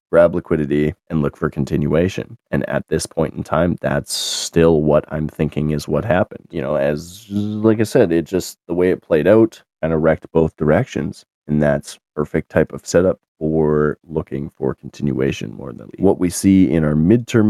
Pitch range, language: 75-90 Hz, English